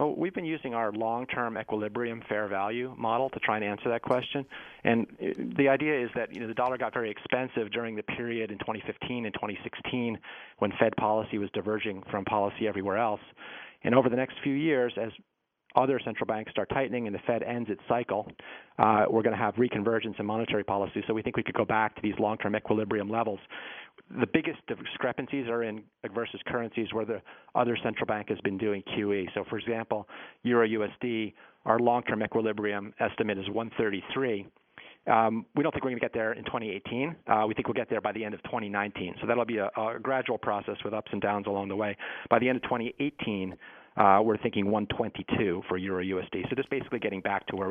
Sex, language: male, English